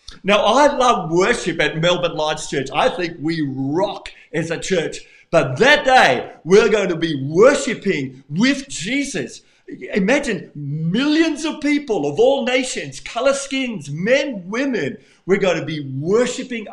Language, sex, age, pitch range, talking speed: English, male, 50-69, 155-240 Hz, 145 wpm